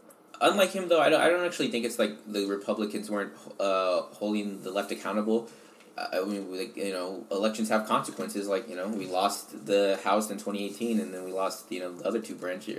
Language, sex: English, male